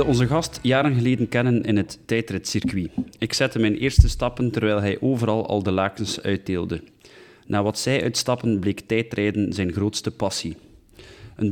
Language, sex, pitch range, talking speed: Dutch, male, 100-120 Hz, 155 wpm